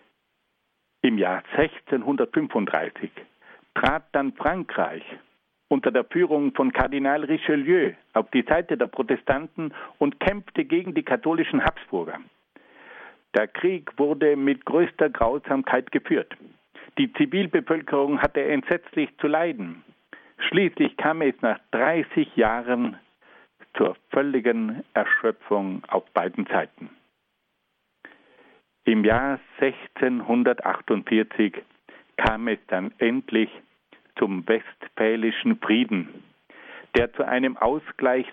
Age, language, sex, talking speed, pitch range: 60-79, German, male, 95 wpm, 125-175 Hz